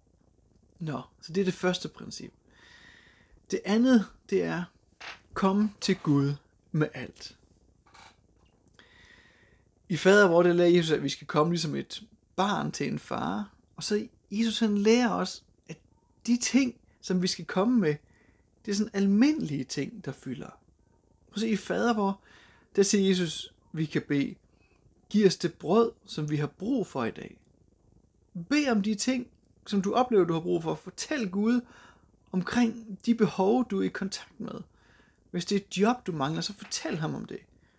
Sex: male